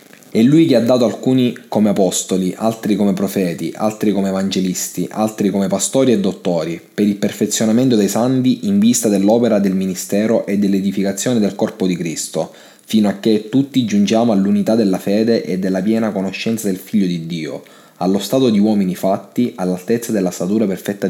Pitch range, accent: 95-110 Hz, native